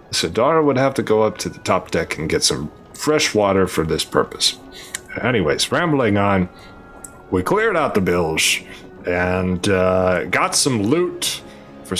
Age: 30-49